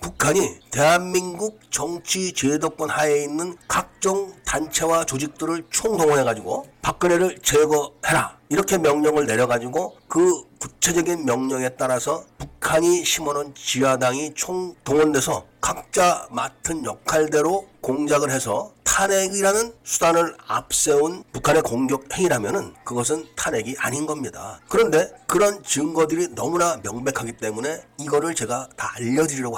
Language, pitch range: Korean, 140-175 Hz